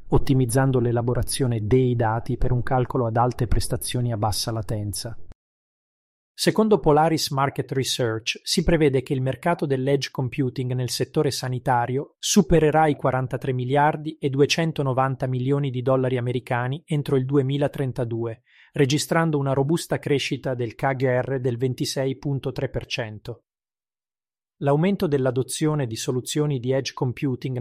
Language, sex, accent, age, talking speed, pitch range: Italian, male, native, 30-49, 120 wpm, 120-140 Hz